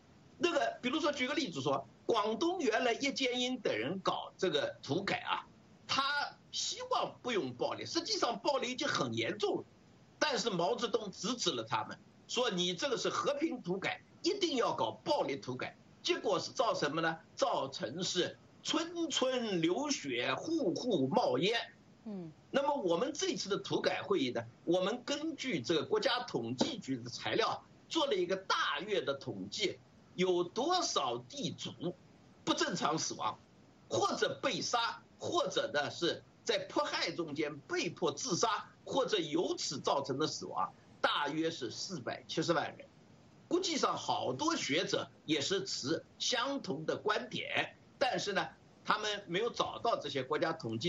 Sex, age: male, 50-69